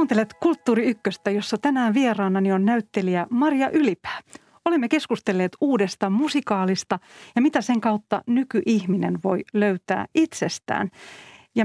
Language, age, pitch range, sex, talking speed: Finnish, 40-59, 190-235 Hz, female, 115 wpm